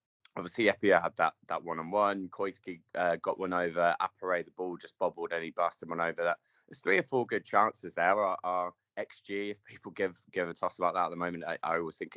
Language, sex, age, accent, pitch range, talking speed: English, male, 20-39, British, 85-105 Hz, 230 wpm